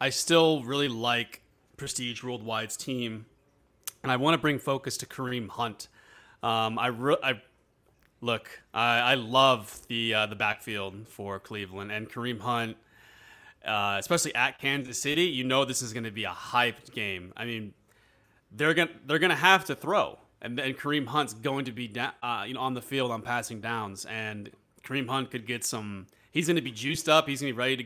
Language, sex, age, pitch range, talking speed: English, male, 30-49, 105-135 Hz, 200 wpm